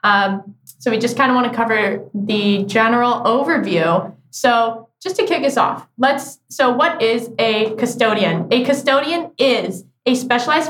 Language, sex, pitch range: English, female, 205-250 Hz